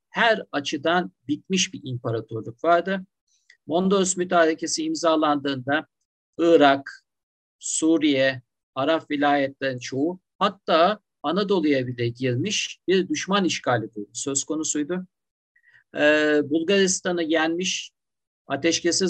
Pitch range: 135-175 Hz